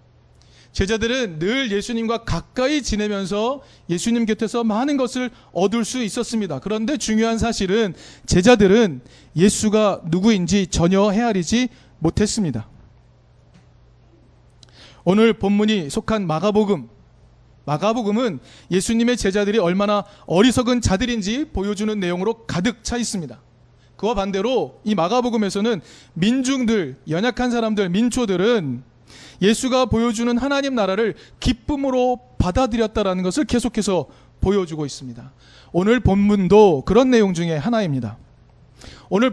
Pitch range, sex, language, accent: 150-230 Hz, male, Korean, native